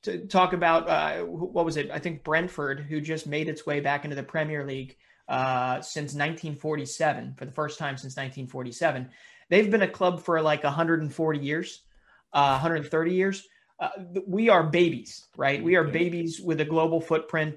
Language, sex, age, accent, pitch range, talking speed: English, male, 30-49, American, 145-170 Hz, 180 wpm